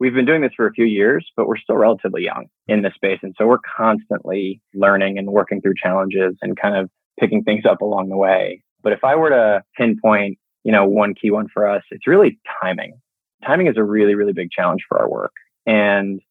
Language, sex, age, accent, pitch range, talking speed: English, male, 20-39, American, 100-115 Hz, 225 wpm